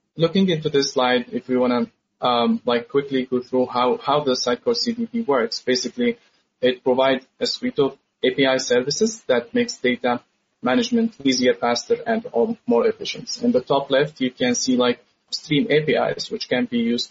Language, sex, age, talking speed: English, male, 20-39, 175 wpm